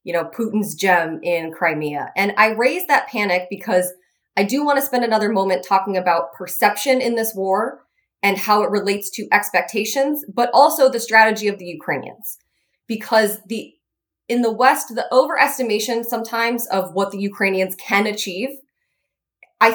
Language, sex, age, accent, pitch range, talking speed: English, female, 20-39, American, 190-235 Hz, 160 wpm